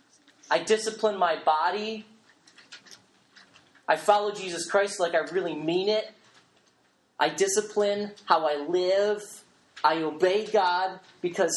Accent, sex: American, male